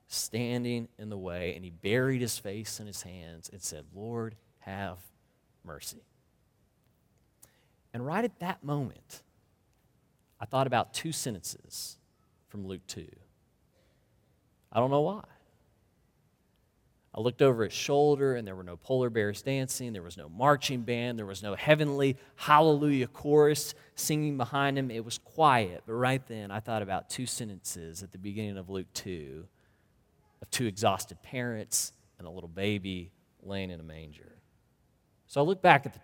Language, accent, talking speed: English, American, 155 wpm